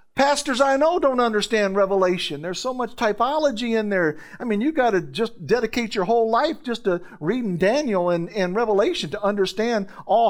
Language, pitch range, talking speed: English, 140-210 Hz, 185 wpm